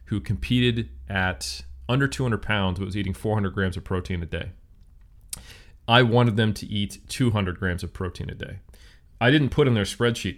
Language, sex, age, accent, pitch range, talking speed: English, male, 30-49, American, 95-110 Hz, 185 wpm